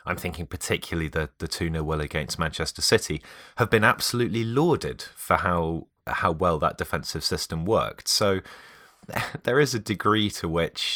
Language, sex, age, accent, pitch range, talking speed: English, male, 30-49, British, 80-95 Hz, 160 wpm